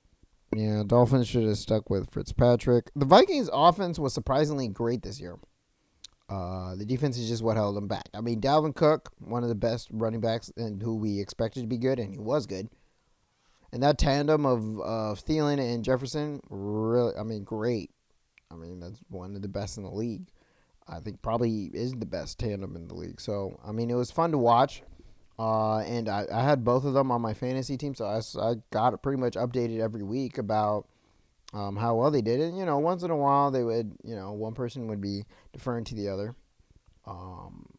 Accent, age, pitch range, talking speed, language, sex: American, 30-49, 105-130 Hz, 215 wpm, English, male